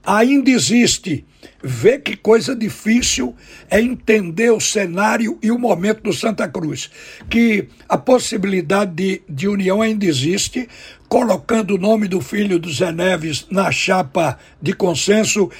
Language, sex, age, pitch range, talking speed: Portuguese, male, 60-79, 185-220 Hz, 140 wpm